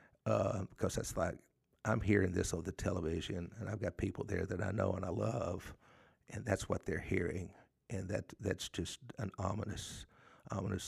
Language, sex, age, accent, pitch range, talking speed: English, male, 50-69, American, 95-110 Hz, 180 wpm